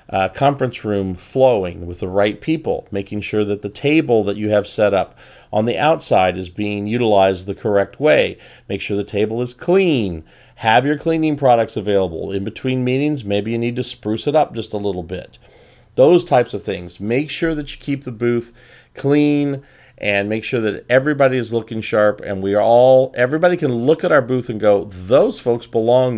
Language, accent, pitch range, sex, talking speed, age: English, American, 100-135 Hz, male, 200 wpm, 40-59